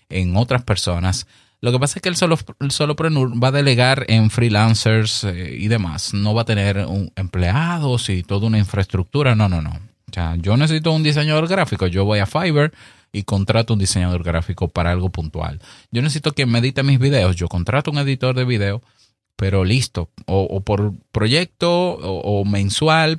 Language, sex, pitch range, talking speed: Spanish, male, 100-140 Hz, 190 wpm